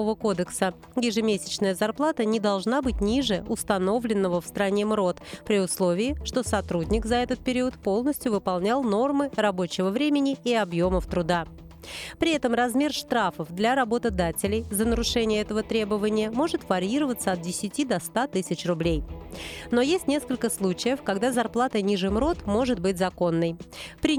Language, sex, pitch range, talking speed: Russian, female, 190-255 Hz, 140 wpm